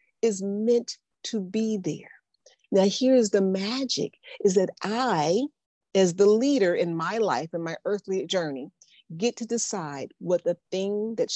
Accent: American